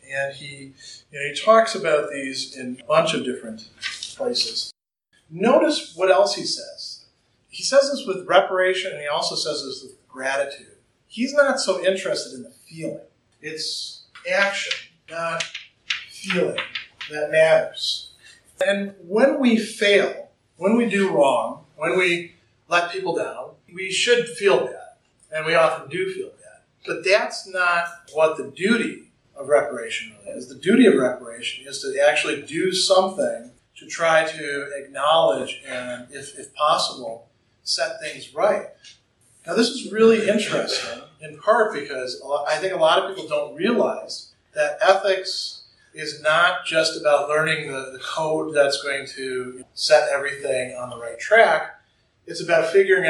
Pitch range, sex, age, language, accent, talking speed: 140-200 Hz, male, 40-59, English, American, 155 wpm